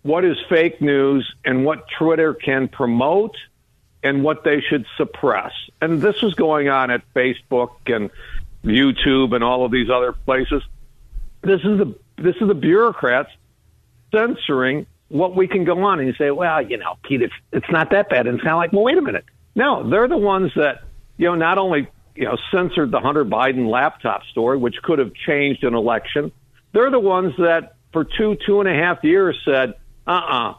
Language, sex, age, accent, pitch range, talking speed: English, male, 60-79, American, 130-175 Hz, 190 wpm